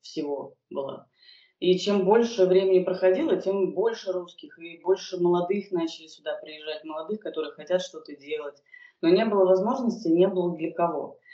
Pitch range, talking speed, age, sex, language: 155-190 Hz, 155 wpm, 20-39, female, Russian